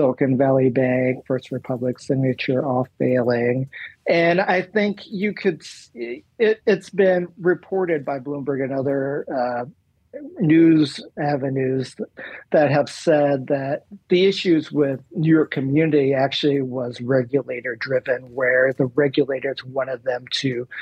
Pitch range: 135-160 Hz